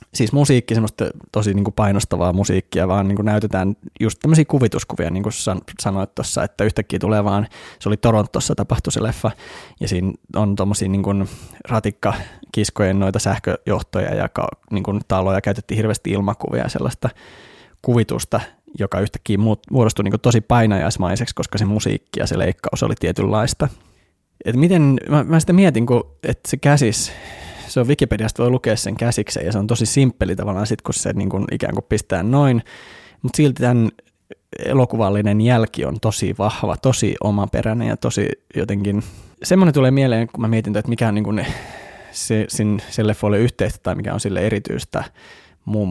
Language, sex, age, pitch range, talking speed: Finnish, male, 20-39, 100-120 Hz, 165 wpm